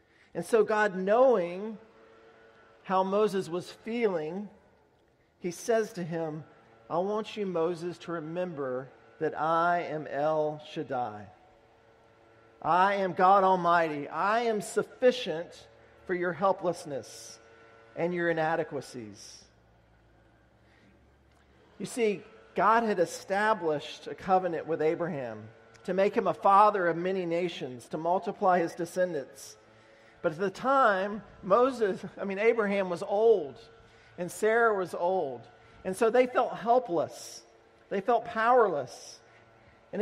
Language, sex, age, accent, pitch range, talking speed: English, male, 40-59, American, 120-195 Hz, 120 wpm